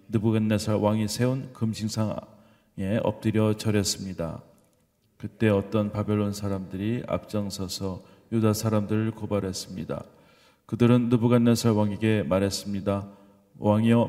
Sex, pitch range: male, 100-115 Hz